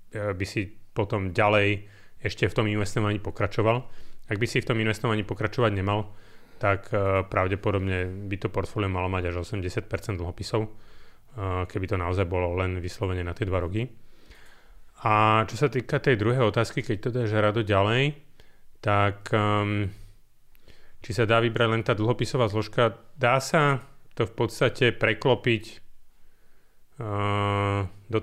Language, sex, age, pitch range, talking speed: Slovak, male, 30-49, 95-115 Hz, 140 wpm